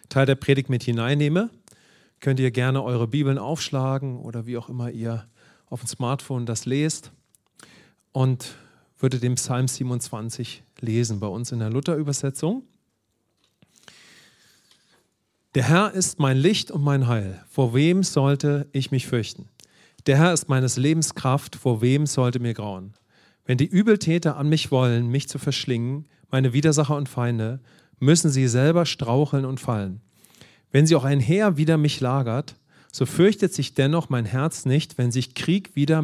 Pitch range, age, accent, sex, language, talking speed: 120-150 Hz, 40-59, German, male, English, 160 wpm